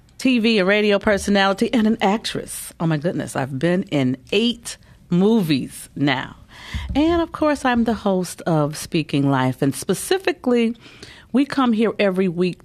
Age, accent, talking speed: 40-59, American, 150 wpm